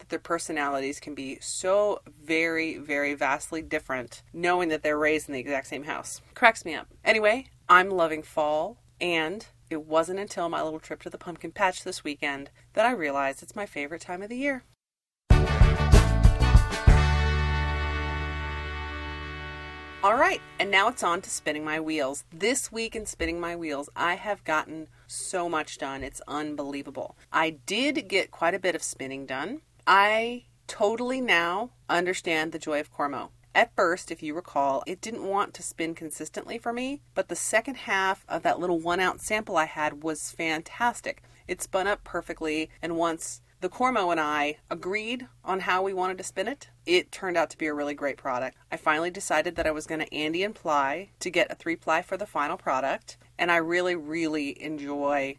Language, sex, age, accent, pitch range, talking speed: English, female, 30-49, American, 140-185 Hz, 180 wpm